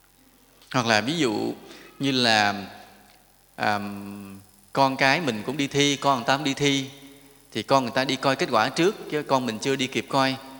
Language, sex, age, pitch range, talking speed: English, male, 20-39, 120-160 Hz, 200 wpm